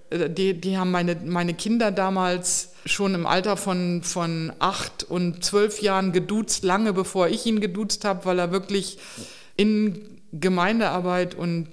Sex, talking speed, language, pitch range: female, 150 wpm, German, 170-195 Hz